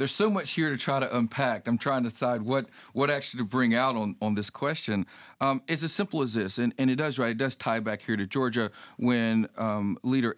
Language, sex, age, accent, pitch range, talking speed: English, male, 40-59, American, 110-140 Hz, 250 wpm